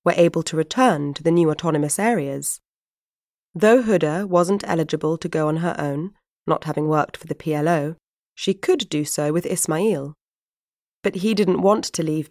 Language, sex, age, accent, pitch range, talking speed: English, female, 20-39, British, 150-185 Hz, 175 wpm